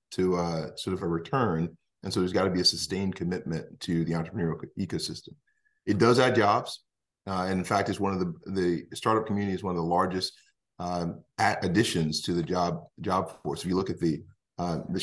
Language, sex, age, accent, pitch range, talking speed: English, male, 40-59, American, 85-100 Hz, 215 wpm